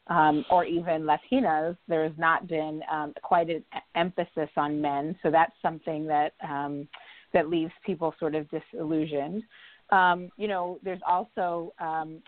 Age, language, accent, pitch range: 30-49, English, American, 160-190 Hz